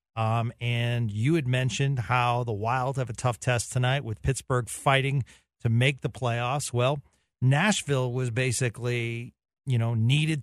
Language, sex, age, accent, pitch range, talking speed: English, male, 40-59, American, 115-145 Hz, 155 wpm